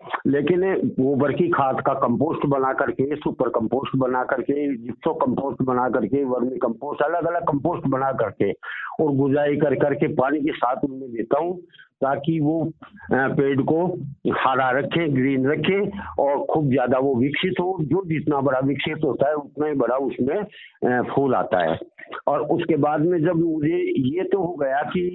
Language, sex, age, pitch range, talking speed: Punjabi, male, 60-79, 125-155 Hz, 130 wpm